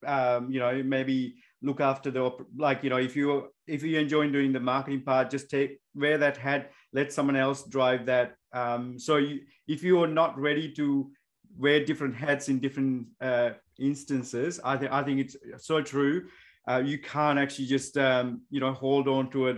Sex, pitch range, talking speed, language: male, 130-150 Hz, 195 wpm, English